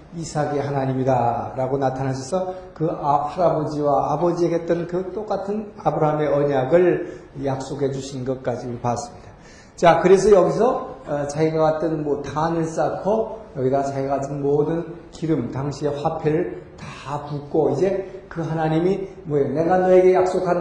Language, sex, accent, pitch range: Korean, male, native, 140-170 Hz